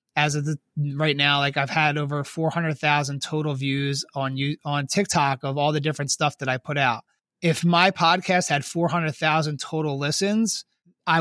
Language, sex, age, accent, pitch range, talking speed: English, male, 30-49, American, 145-180 Hz, 175 wpm